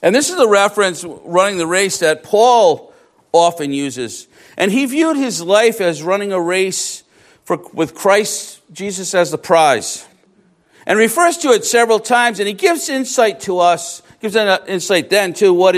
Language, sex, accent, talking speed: English, male, American, 175 wpm